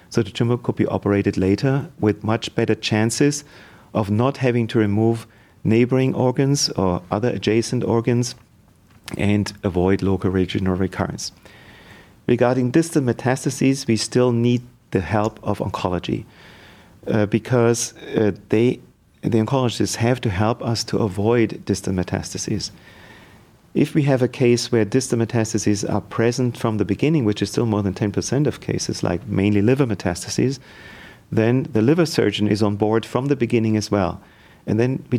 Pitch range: 105-125 Hz